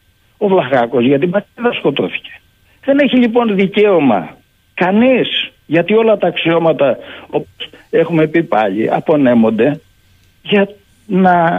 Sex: male